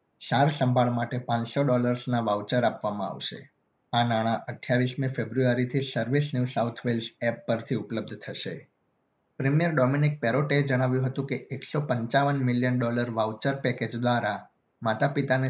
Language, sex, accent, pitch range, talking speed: Gujarati, male, native, 115-130 Hz, 130 wpm